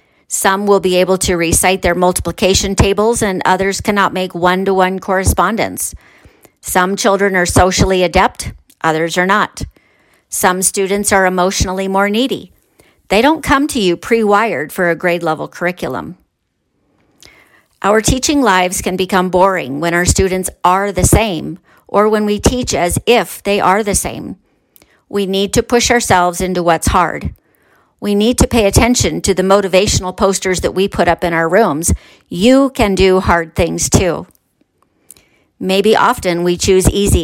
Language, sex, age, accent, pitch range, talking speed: English, female, 50-69, American, 180-205 Hz, 155 wpm